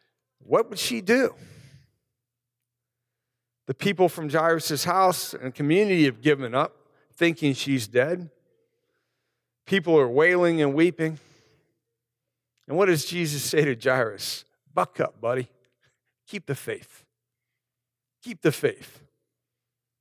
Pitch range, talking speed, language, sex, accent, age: 125-155 Hz, 115 wpm, English, male, American, 50-69